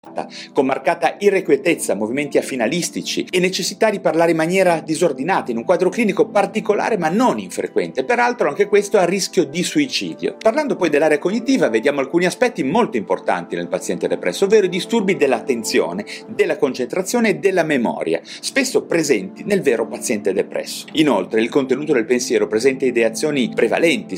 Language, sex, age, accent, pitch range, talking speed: Italian, male, 40-59, native, 165-225 Hz, 155 wpm